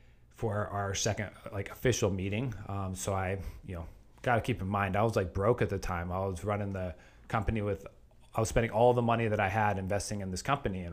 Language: English